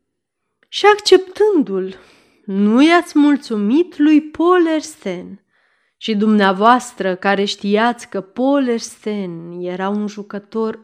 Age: 30-49